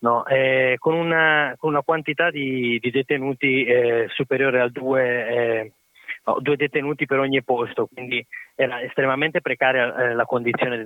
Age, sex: 20-39, male